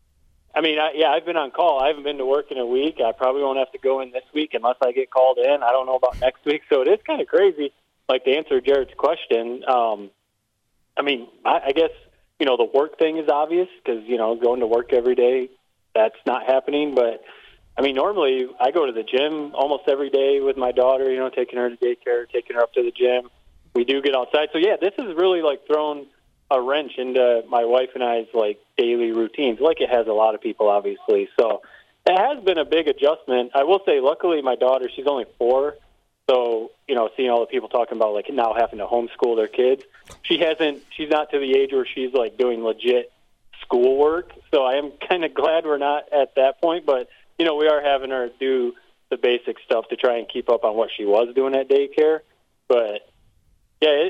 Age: 20-39